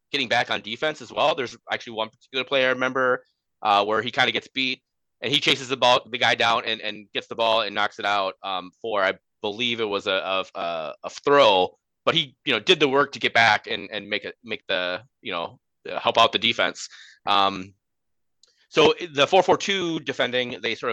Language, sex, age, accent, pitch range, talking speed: English, male, 30-49, American, 110-140 Hz, 225 wpm